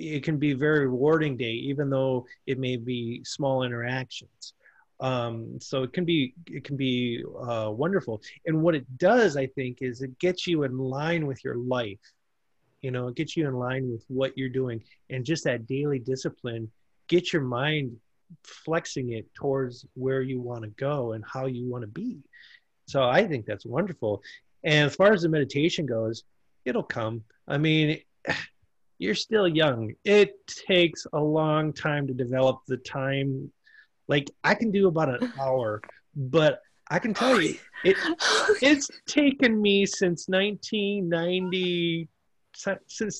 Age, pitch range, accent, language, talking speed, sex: 30-49, 130-175 Hz, American, English, 165 wpm, male